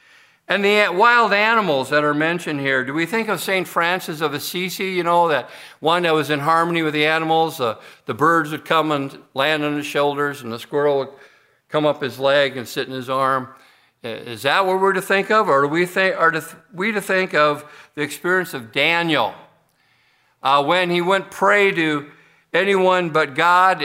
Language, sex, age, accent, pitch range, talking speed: English, male, 50-69, American, 140-170 Hz, 190 wpm